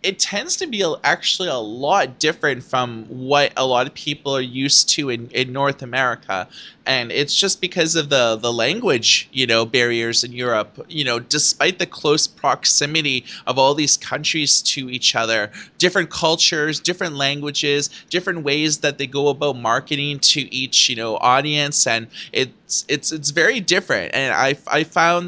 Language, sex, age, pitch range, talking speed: English, male, 20-39, 130-160 Hz, 175 wpm